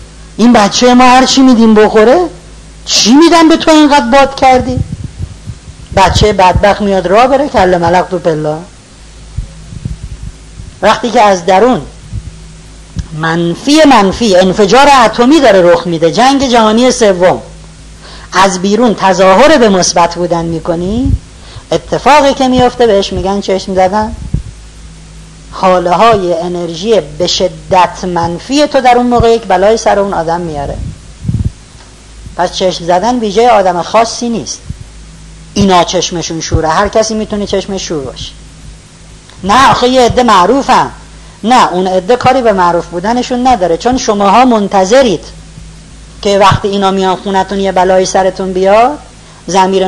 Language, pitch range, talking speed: Persian, 180-240 Hz, 130 wpm